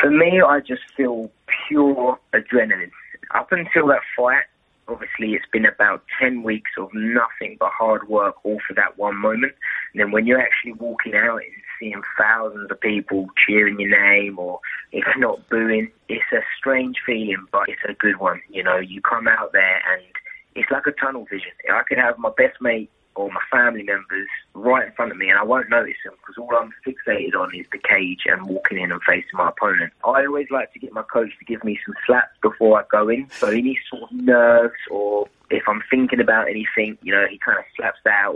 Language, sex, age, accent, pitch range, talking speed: English, male, 20-39, British, 100-120 Hz, 215 wpm